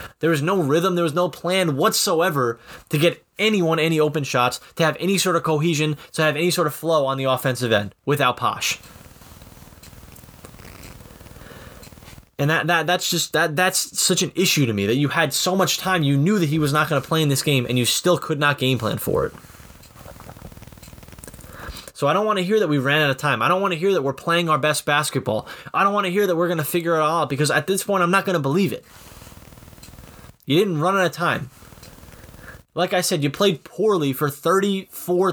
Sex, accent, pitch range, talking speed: male, American, 145-185 Hz, 225 wpm